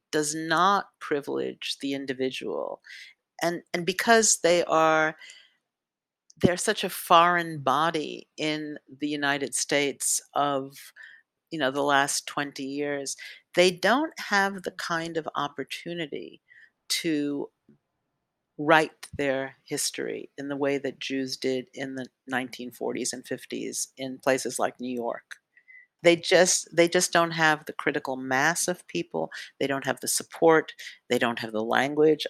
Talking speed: 135 wpm